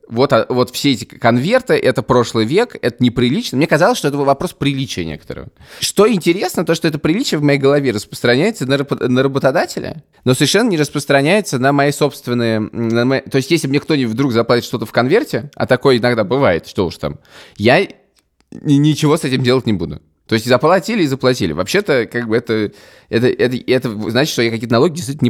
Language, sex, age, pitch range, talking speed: Russian, male, 20-39, 100-140 Hz, 190 wpm